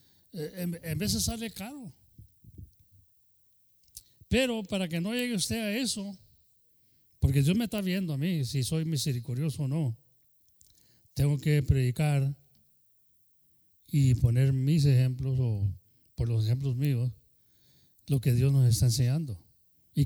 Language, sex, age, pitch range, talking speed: English, male, 40-59, 120-185 Hz, 130 wpm